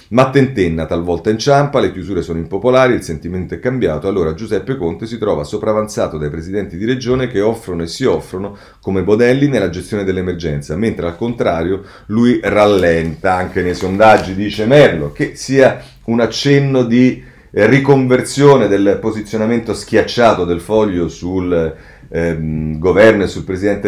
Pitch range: 90-125 Hz